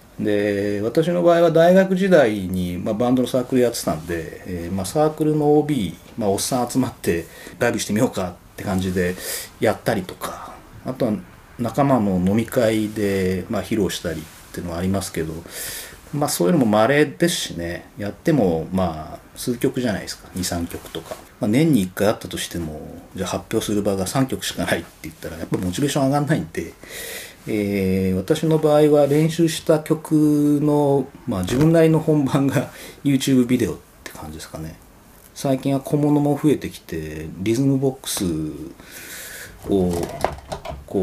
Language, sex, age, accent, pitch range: Japanese, male, 40-59, native, 95-145 Hz